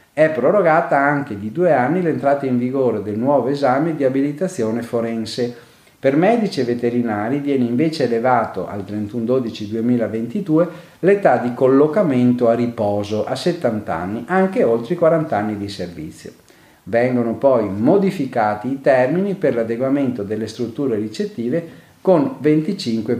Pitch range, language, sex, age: 110-150 Hz, Italian, male, 40-59